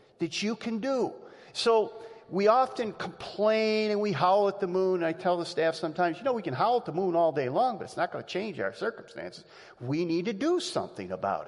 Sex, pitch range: male, 170-255 Hz